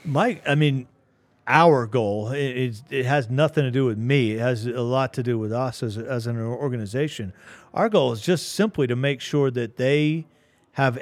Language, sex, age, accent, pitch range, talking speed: English, male, 40-59, American, 120-145 Hz, 195 wpm